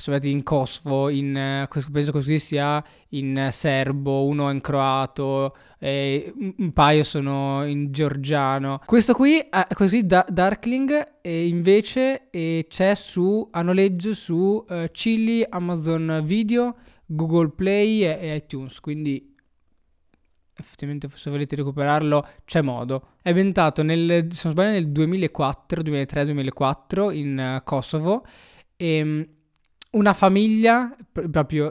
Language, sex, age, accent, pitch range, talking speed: Italian, male, 20-39, native, 140-180 Hz, 125 wpm